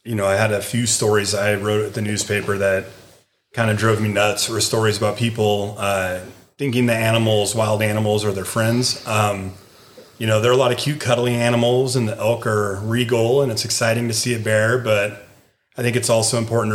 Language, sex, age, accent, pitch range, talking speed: English, male, 30-49, American, 100-120 Hz, 215 wpm